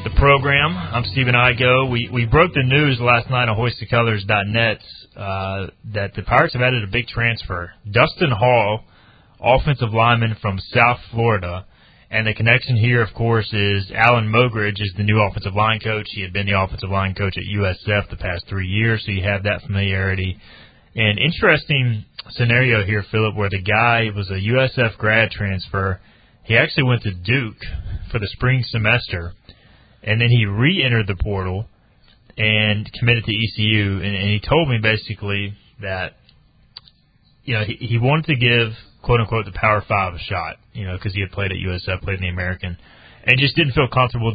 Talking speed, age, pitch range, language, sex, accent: 180 wpm, 30-49, 100-120 Hz, English, male, American